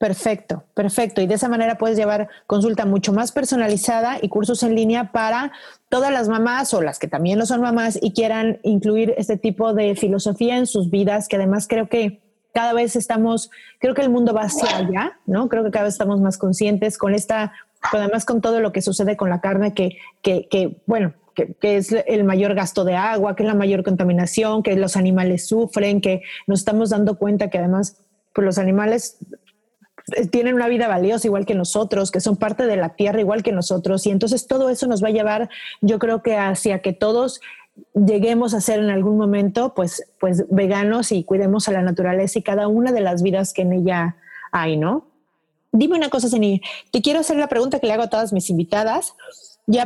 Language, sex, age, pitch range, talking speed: Spanish, female, 30-49, 195-230 Hz, 210 wpm